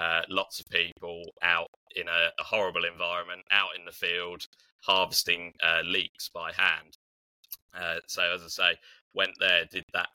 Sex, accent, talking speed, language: male, British, 165 wpm, English